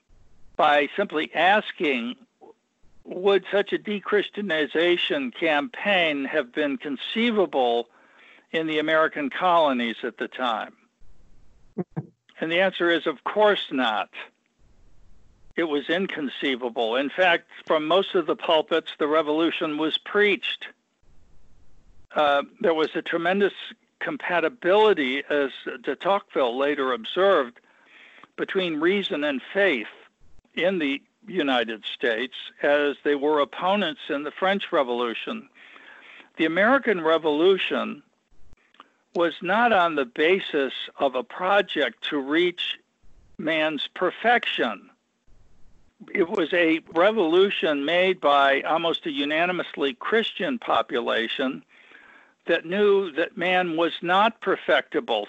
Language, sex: English, male